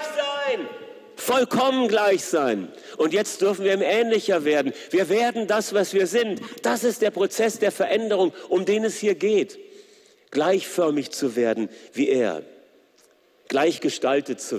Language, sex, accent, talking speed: German, male, German, 140 wpm